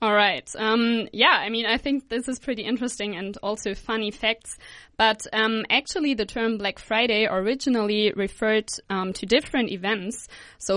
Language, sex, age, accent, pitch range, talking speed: English, female, 20-39, German, 200-235 Hz, 160 wpm